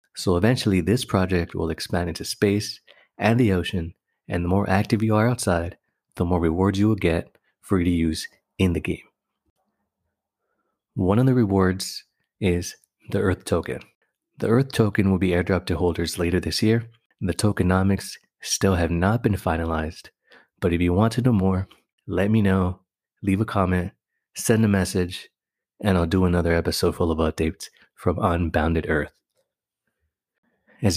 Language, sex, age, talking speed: English, male, 30-49, 165 wpm